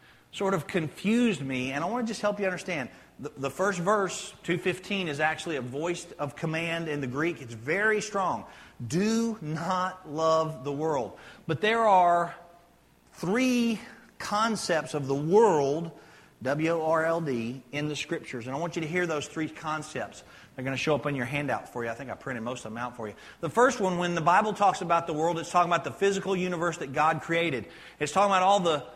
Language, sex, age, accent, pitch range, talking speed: English, male, 40-59, American, 145-195 Hz, 205 wpm